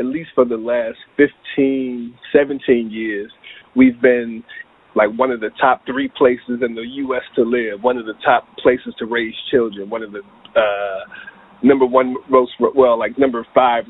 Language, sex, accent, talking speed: English, male, American, 180 wpm